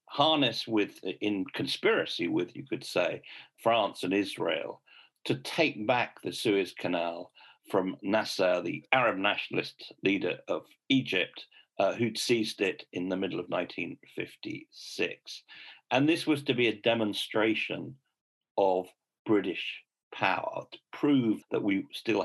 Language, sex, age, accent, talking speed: English, male, 50-69, British, 130 wpm